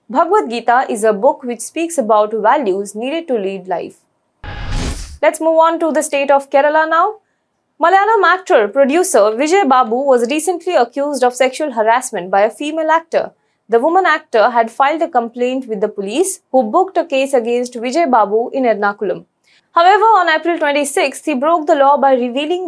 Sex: female